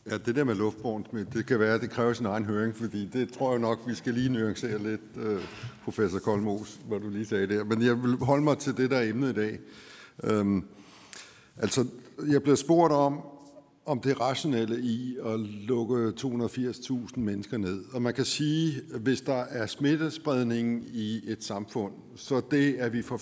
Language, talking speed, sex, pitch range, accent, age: Danish, 190 wpm, male, 110-130 Hz, native, 60-79